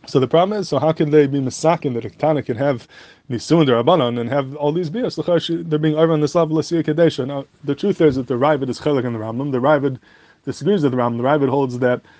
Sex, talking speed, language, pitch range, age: male, 250 wpm, English, 125-155 Hz, 20-39